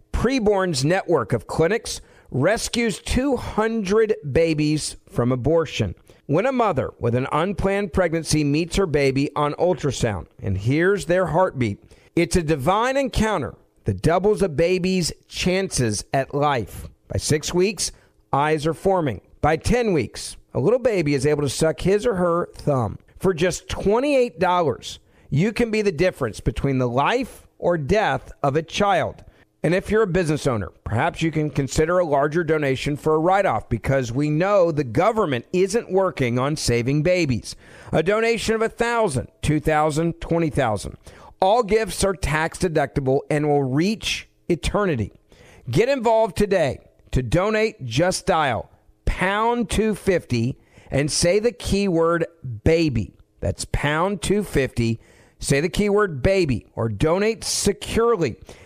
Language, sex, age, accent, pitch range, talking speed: English, male, 50-69, American, 135-195 Hz, 140 wpm